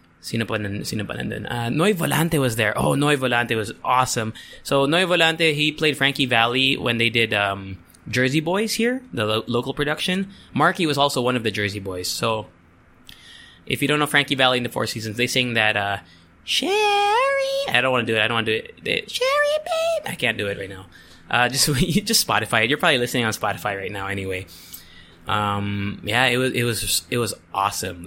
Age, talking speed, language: 20-39, 205 wpm, English